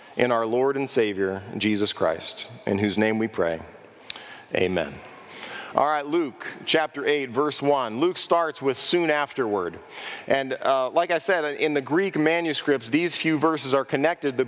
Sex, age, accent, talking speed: male, 40-59, American, 170 wpm